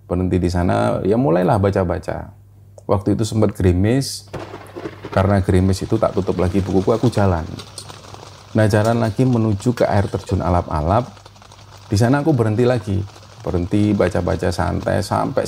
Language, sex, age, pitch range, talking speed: Indonesian, male, 30-49, 95-115 Hz, 135 wpm